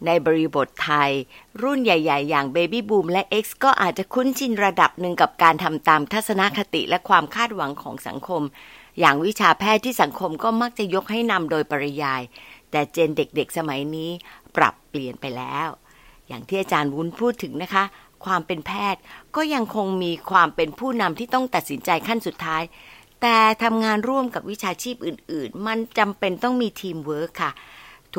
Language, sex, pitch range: Thai, female, 160-220 Hz